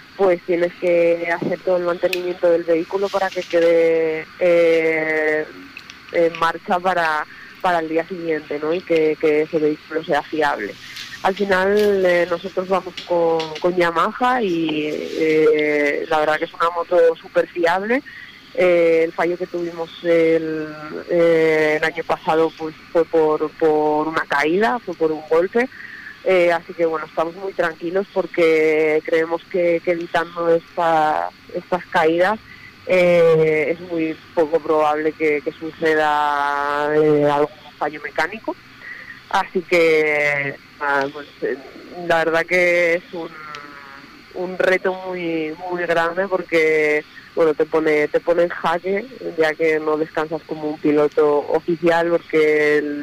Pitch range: 155-175 Hz